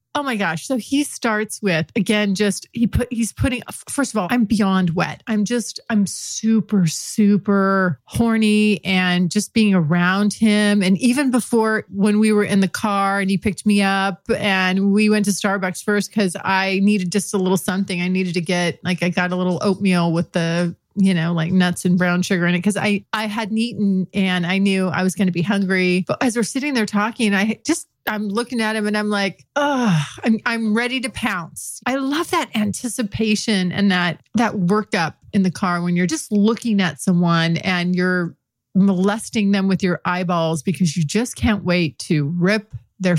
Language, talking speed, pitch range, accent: English, 200 wpm, 180-215 Hz, American